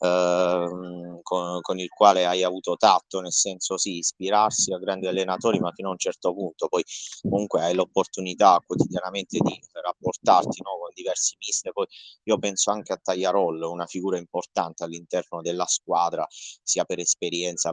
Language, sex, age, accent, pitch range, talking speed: Italian, male, 20-39, native, 90-110 Hz, 160 wpm